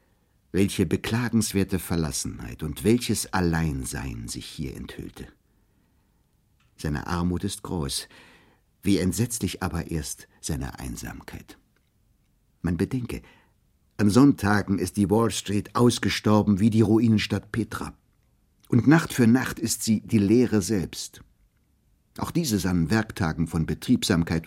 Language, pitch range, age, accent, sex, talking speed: German, 80-105 Hz, 60-79, German, male, 115 wpm